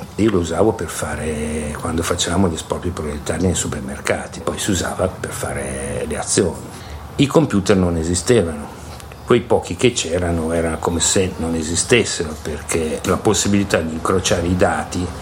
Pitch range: 85-100 Hz